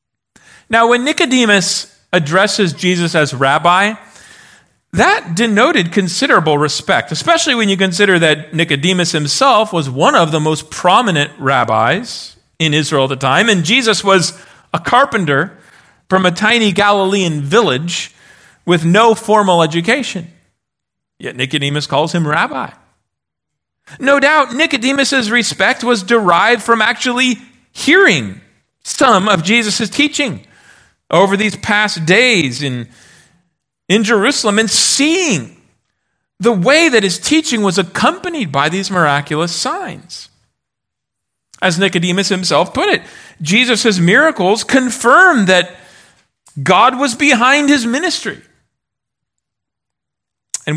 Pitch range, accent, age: 165-230 Hz, American, 40-59